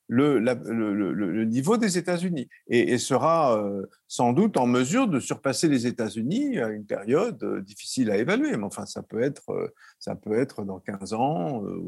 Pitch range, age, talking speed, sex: 125-205 Hz, 50-69, 175 wpm, male